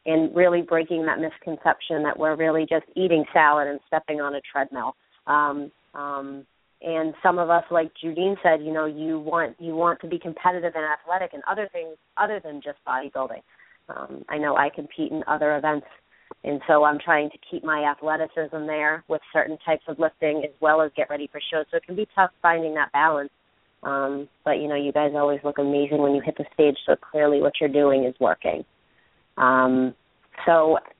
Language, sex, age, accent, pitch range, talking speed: English, female, 30-49, American, 150-170 Hz, 200 wpm